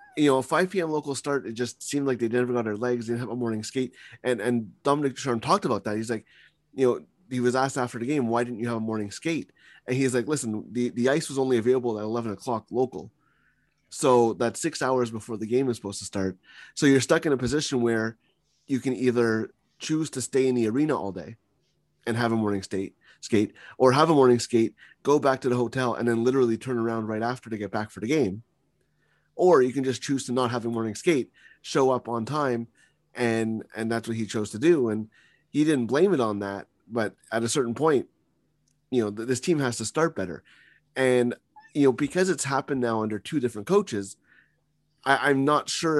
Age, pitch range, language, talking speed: 20-39, 115-140 Hz, English, 230 wpm